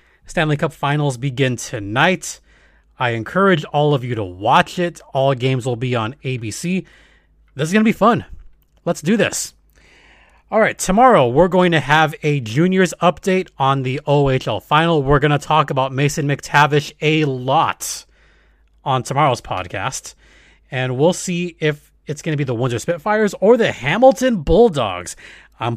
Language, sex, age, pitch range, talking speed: English, male, 30-49, 140-175 Hz, 165 wpm